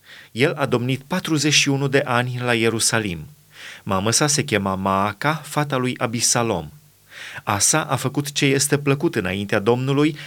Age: 30-49